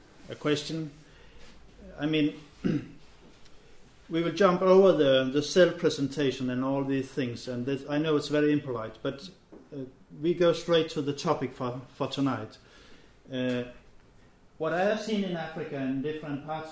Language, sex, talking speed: Danish, male, 155 wpm